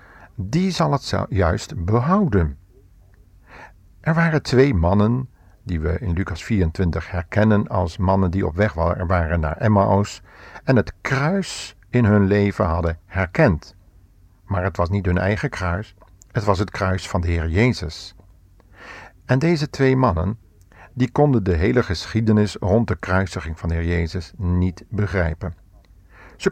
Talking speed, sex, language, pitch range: 145 wpm, male, Dutch, 90-115 Hz